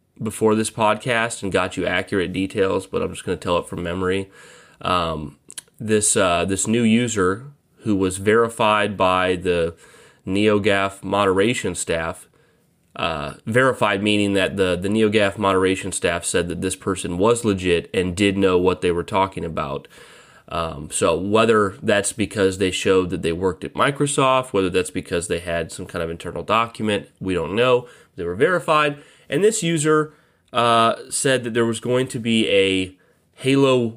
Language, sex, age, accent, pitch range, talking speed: English, male, 30-49, American, 95-115 Hz, 170 wpm